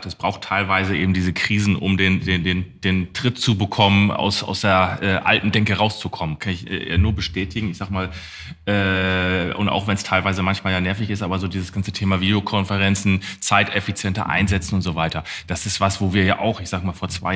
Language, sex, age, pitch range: German, male, 30-49, 95-110 Hz